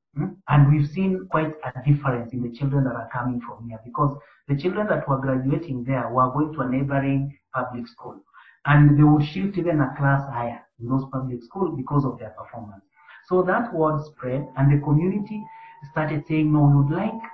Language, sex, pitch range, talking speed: English, male, 125-155 Hz, 195 wpm